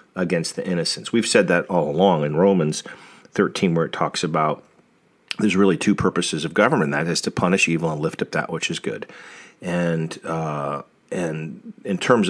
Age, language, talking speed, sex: 40-59, English, 185 wpm, male